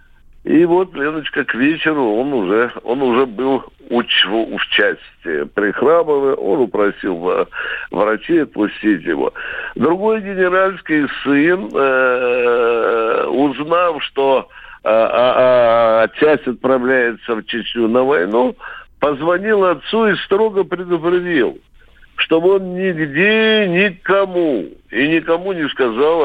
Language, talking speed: Russian, 105 wpm